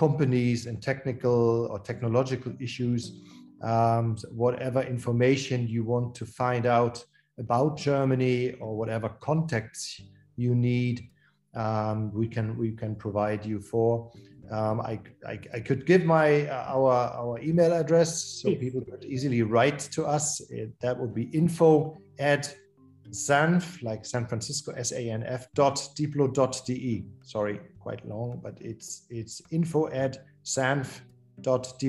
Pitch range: 110-135 Hz